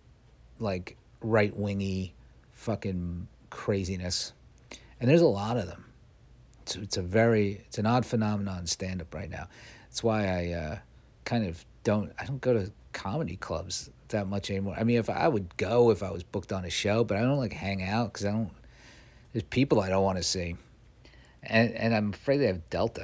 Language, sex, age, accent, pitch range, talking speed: English, male, 50-69, American, 90-110 Hz, 200 wpm